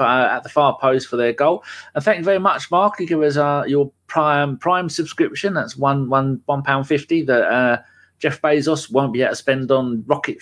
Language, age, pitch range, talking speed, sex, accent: English, 30-49, 110-155 Hz, 225 wpm, male, British